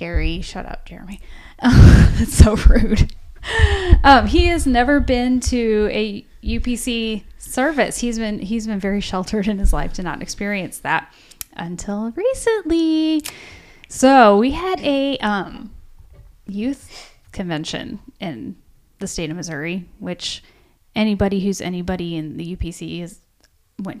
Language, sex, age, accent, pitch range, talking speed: English, female, 10-29, American, 185-250 Hz, 130 wpm